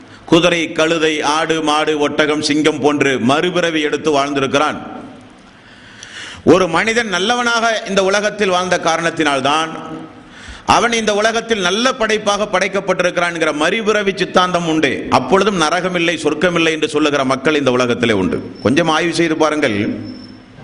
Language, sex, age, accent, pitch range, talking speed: Tamil, male, 50-69, native, 150-200 Hz, 110 wpm